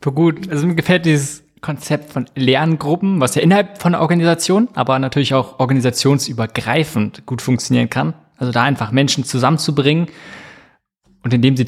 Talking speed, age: 155 wpm, 20-39